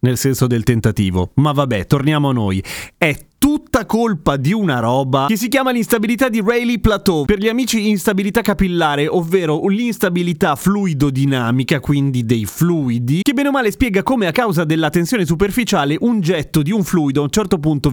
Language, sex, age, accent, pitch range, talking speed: Italian, male, 30-49, native, 150-205 Hz, 175 wpm